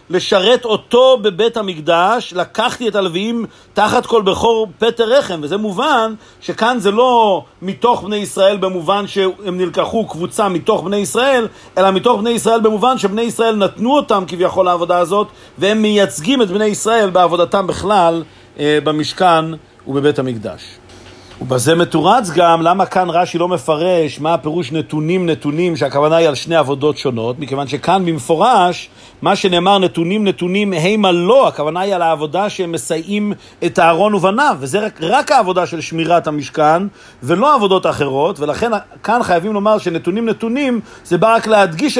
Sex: male